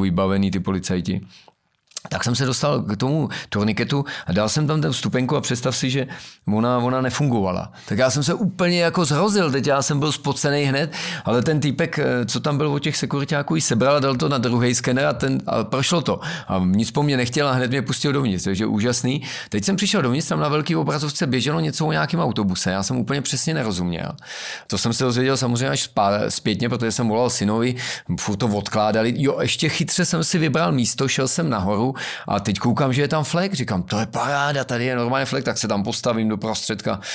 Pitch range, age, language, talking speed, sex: 105-145 Hz, 40-59, Czech, 215 wpm, male